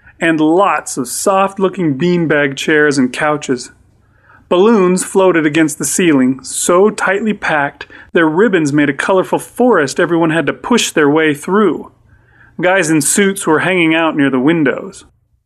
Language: English